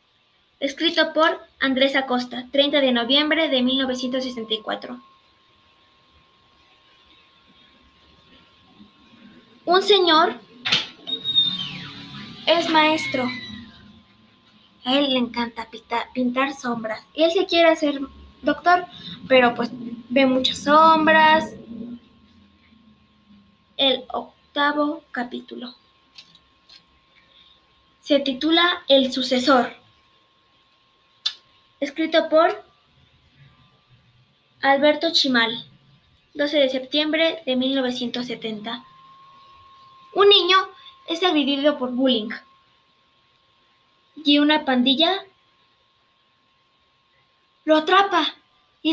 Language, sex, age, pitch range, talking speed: Spanish, female, 20-39, 250-330 Hz, 75 wpm